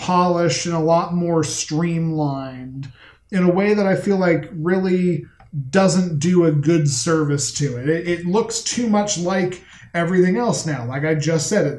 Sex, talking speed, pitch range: male, 175 wpm, 150-180 Hz